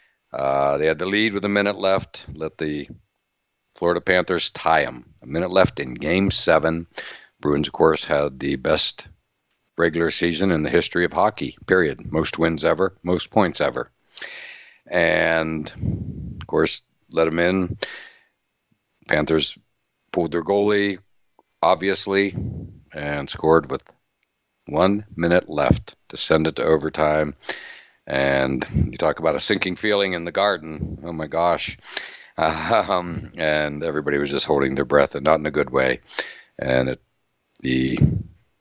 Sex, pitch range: male, 75-90 Hz